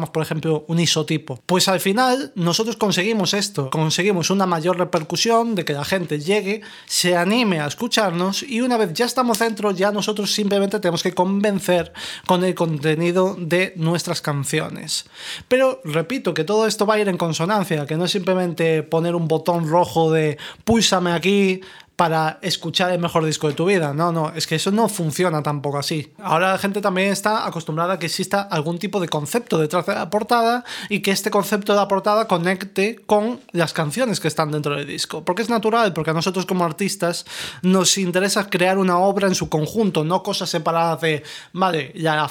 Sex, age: male, 30-49